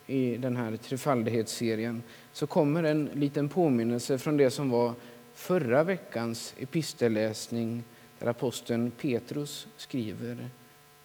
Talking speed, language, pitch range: 110 wpm, Swedish, 115-145 Hz